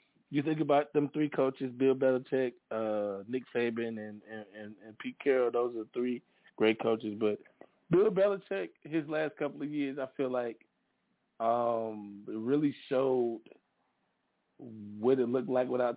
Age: 20-39